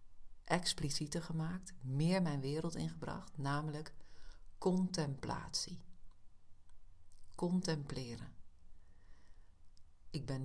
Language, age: Dutch, 40-59